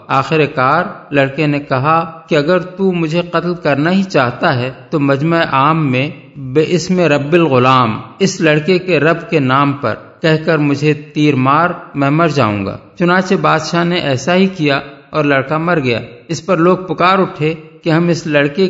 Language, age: Urdu, 50-69